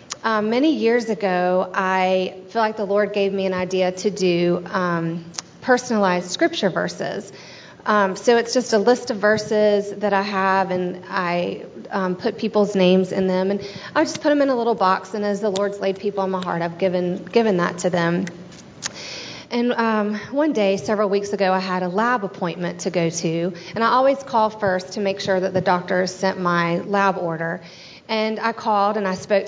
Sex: female